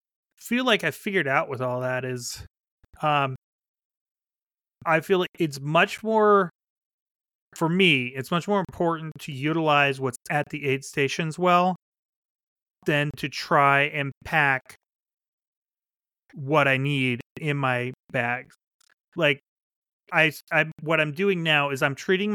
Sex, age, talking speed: male, 30-49, 135 wpm